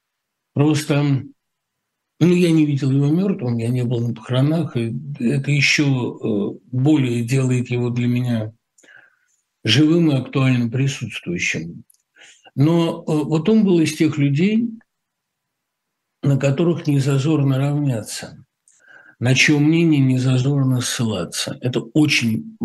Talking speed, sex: 110 wpm, male